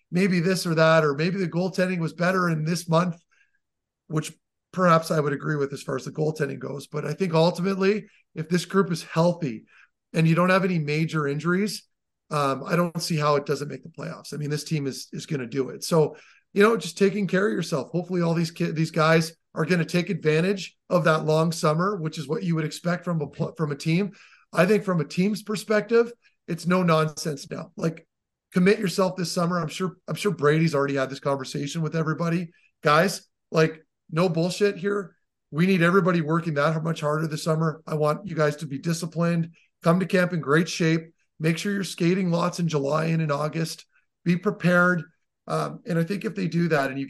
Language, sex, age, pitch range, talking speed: English, male, 30-49, 155-180 Hz, 215 wpm